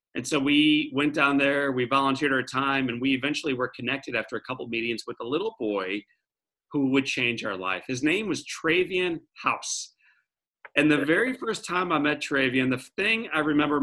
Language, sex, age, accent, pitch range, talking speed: English, male, 40-59, American, 125-150 Hz, 200 wpm